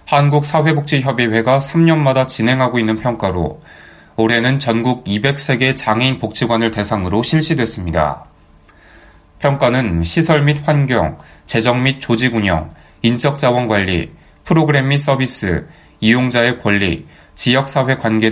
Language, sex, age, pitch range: Korean, male, 20-39, 100-135 Hz